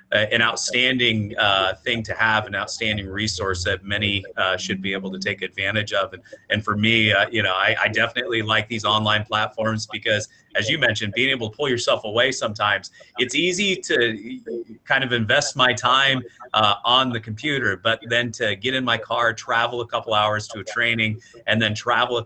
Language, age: English, 30-49